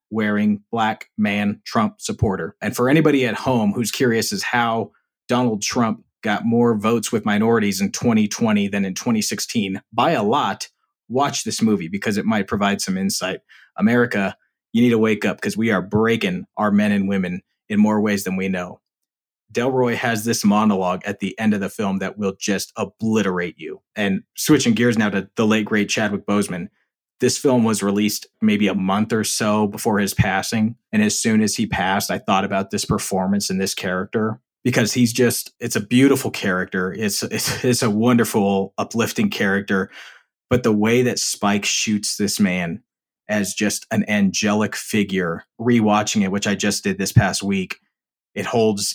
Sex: male